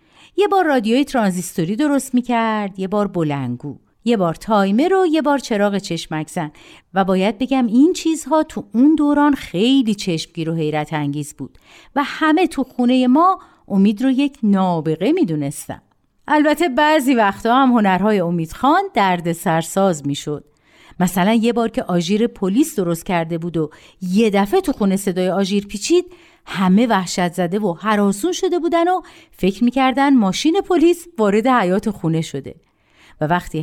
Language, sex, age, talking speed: Persian, female, 50-69, 155 wpm